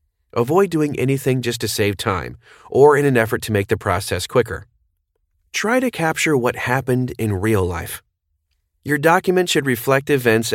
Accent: American